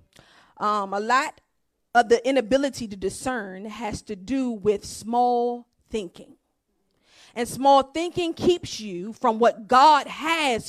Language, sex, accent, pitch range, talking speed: English, female, American, 235-320 Hz, 130 wpm